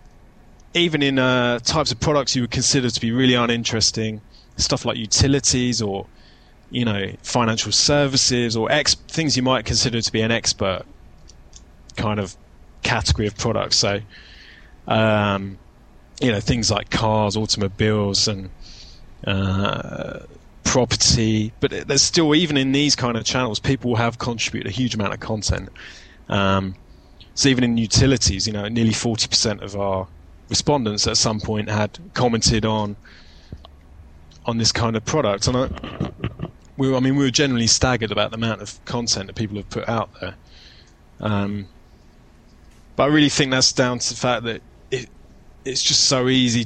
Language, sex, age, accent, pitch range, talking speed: English, male, 20-39, British, 100-125 Hz, 160 wpm